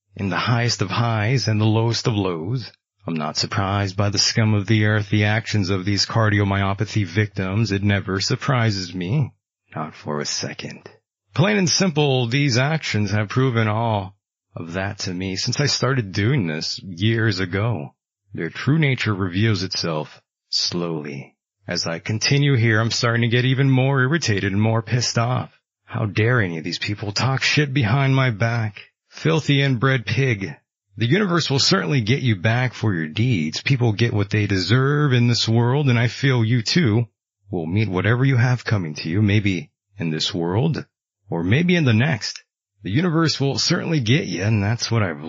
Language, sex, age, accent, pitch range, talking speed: English, male, 30-49, American, 100-125 Hz, 180 wpm